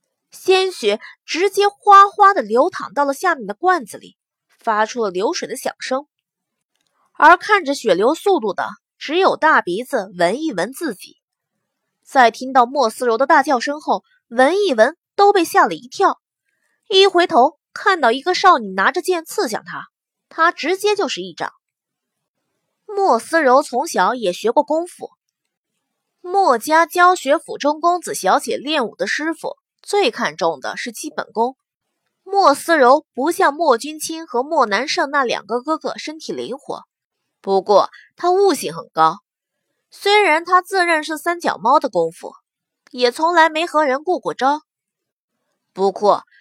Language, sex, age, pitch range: Chinese, female, 20-39, 255-360 Hz